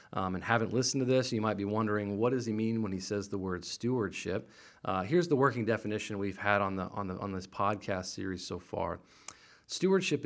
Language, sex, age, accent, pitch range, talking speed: English, male, 40-59, American, 100-120 Hz, 210 wpm